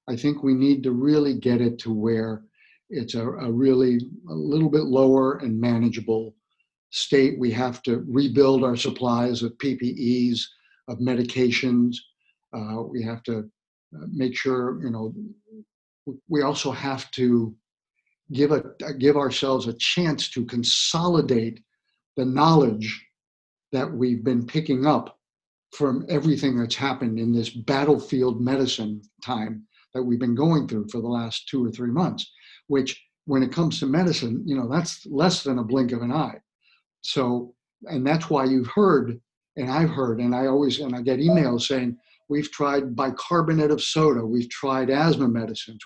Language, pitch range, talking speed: English, 120-140 Hz, 155 wpm